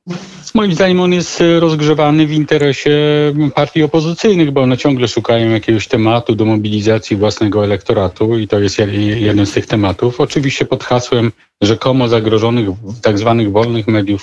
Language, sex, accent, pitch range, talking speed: Polish, male, native, 105-135 Hz, 145 wpm